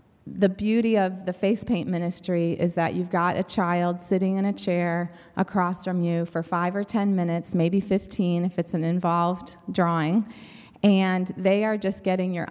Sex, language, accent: female, English, American